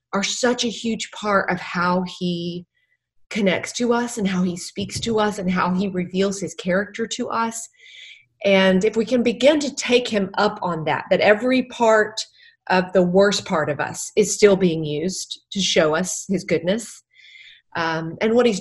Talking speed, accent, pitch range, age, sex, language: 185 wpm, American, 175-220 Hz, 30-49, female, English